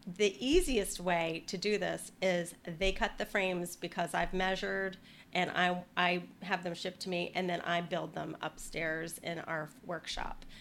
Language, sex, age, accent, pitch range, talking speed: English, female, 30-49, American, 180-220 Hz, 175 wpm